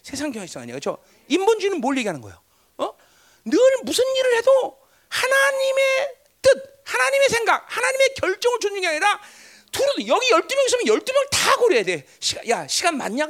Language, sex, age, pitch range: Korean, male, 40-59, 290-485 Hz